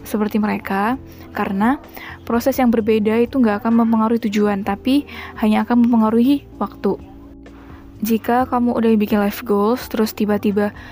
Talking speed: 130 wpm